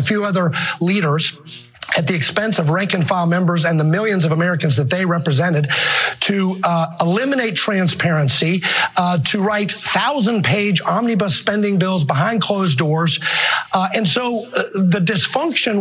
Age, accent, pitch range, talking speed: 50-69, American, 165-210 Hz, 150 wpm